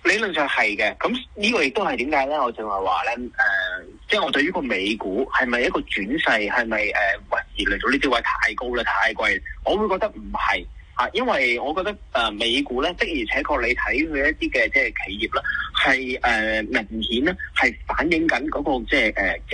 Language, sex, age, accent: Chinese, male, 30-49, native